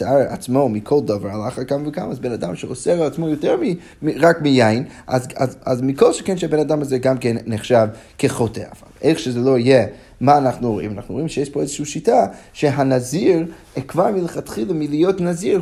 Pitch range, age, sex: 125-170 Hz, 30-49, male